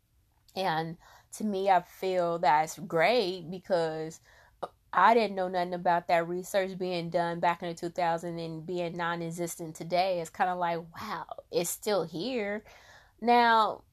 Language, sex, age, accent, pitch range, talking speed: English, female, 20-39, American, 160-180 Hz, 145 wpm